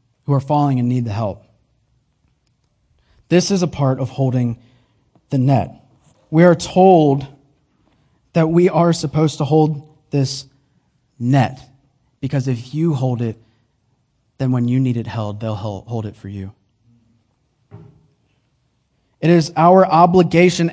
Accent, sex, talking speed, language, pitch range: American, male, 135 wpm, English, 120-150 Hz